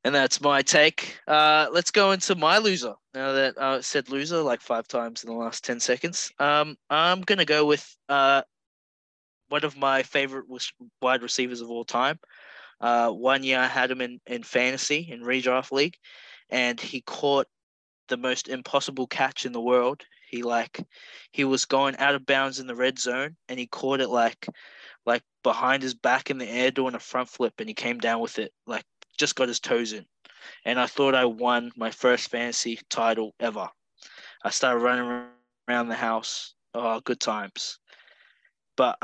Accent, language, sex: Australian, English, male